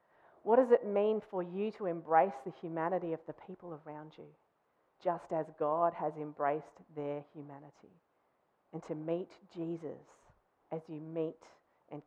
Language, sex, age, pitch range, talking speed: English, female, 40-59, 155-180 Hz, 150 wpm